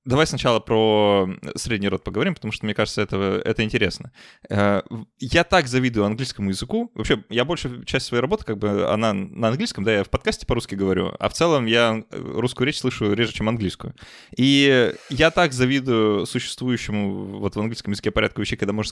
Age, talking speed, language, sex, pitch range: 20-39, 185 wpm, Russian, male, 100-130 Hz